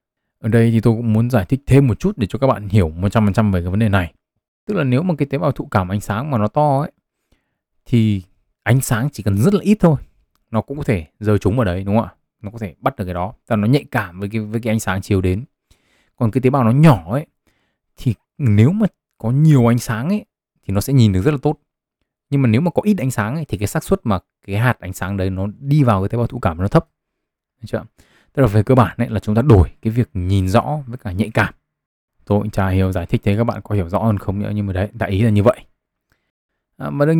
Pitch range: 100-135 Hz